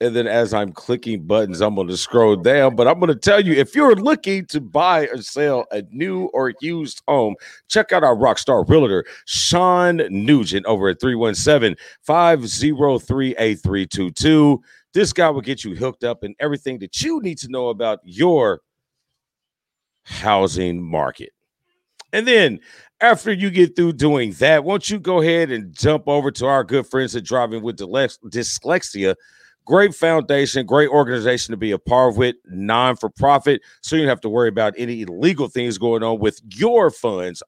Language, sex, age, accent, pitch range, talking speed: English, male, 40-59, American, 110-150 Hz, 170 wpm